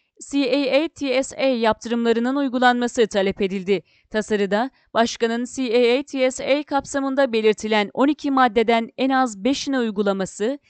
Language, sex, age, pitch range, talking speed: Turkish, female, 30-49, 230-275 Hz, 90 wpm